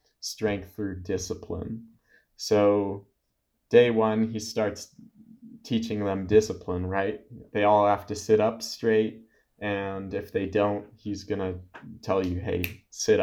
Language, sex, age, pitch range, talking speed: English, male, 20-39, 95-110 Hz, 130 wpm